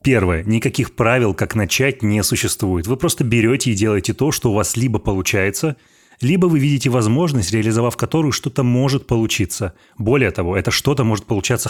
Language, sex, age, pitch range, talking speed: Russian, male, 30-49, 100-125 Hz, 170 wpm